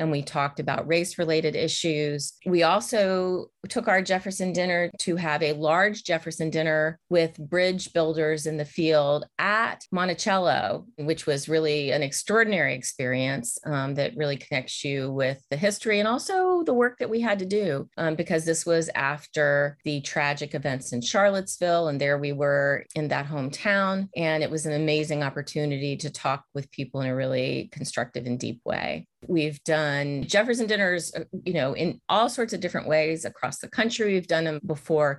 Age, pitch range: 30-49, 145-180 Hz